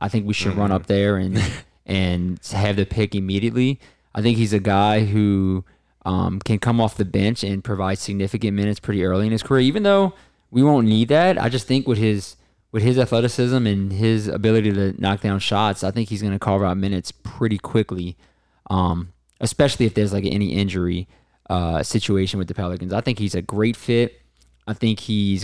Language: English